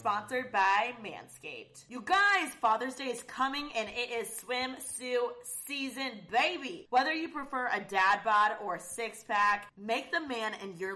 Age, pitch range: 20-39, 190-255 Hz